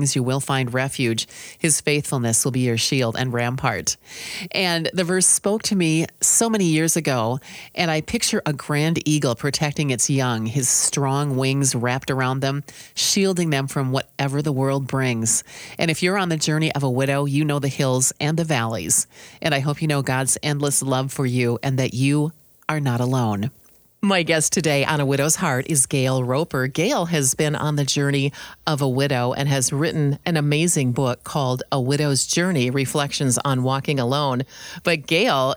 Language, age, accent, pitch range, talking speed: English, 40-59, American, 130-160 Hz, 185 wpm